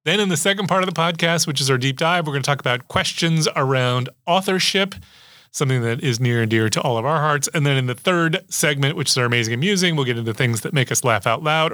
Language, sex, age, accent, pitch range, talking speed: English, male, 30-49, American, 130-170 Hz, 275 wpm